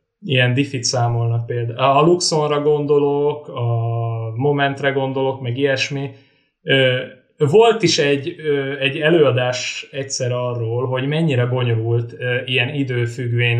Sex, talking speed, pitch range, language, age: male, 105 wpm, 120-140 Hz, Hungarian, 20-39